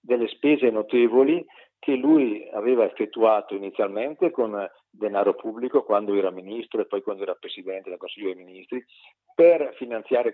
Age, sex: 50-69, male